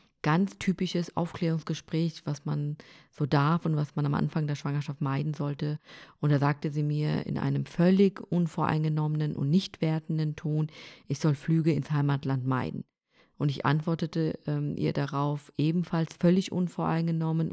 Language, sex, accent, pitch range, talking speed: German, female, German, 150-180 Hz, 150 wpm